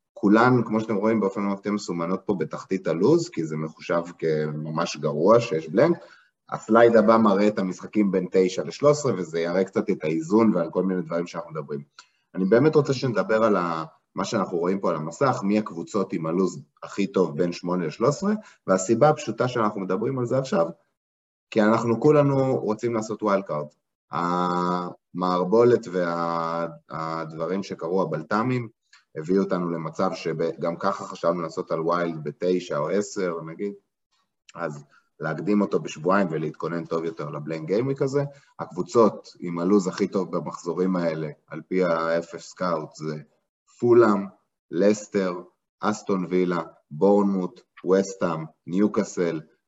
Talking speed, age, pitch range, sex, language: 145 wpm, 30-49, 85-110 Hz, male, Hebrew